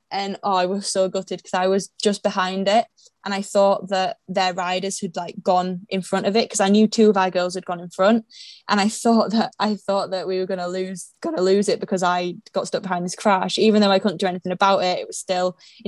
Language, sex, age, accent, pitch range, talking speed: English, female, 10-29, British, 180-200 Hz, 260 wpm